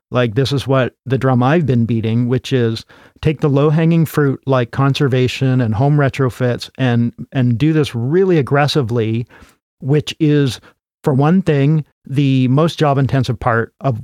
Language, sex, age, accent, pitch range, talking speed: English, male, 50-69, American, 120-140 Hz, 160 wpm